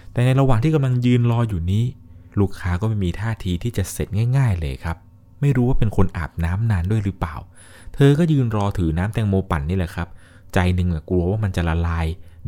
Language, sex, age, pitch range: Thai, male, 20-39, 90-130 Hz